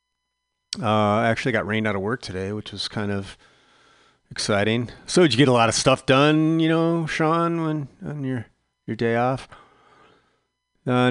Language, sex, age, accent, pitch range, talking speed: English, male, 40-59, American, 110-155 Hz, 180 wpm